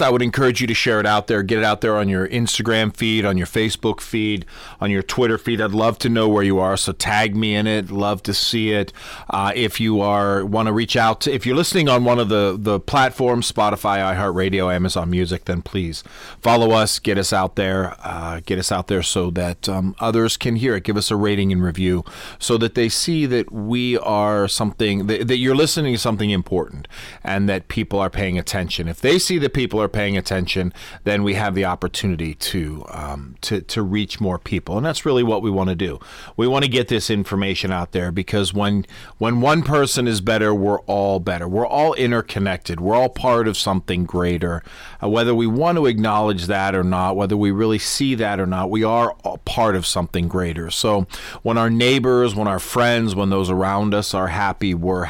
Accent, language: American, English